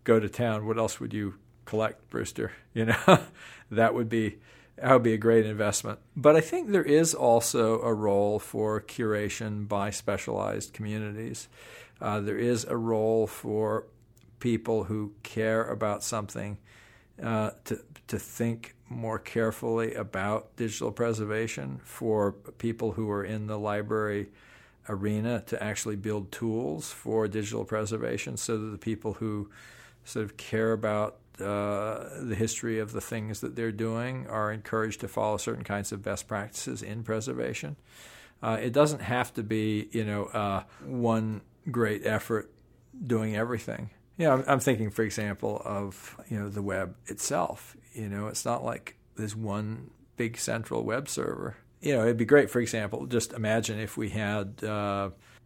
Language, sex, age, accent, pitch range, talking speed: English, male, 50-69, American, 105-115 Hz, 160 wpm